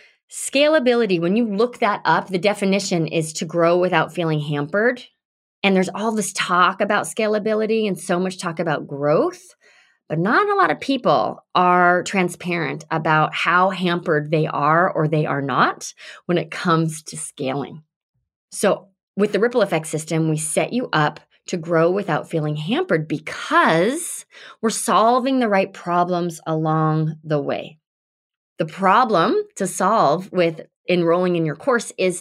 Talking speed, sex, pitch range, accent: 155 wpm, female, 160-205 Hz, American